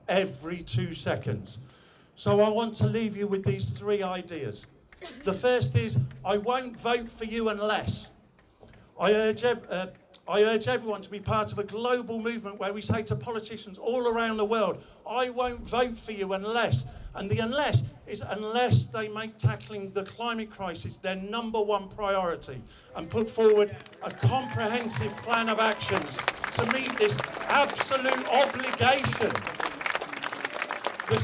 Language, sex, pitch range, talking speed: English, male, 185-225 Hz, 150 wpm